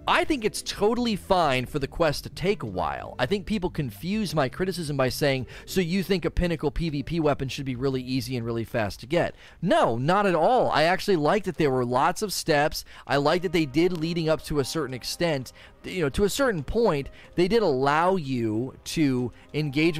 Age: 30-49